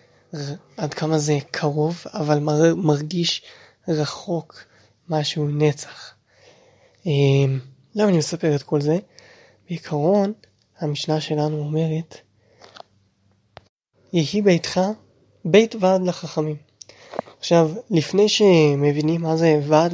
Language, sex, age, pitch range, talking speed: Hebrew, male, 20-39, 145-170 Hz, 95 wpm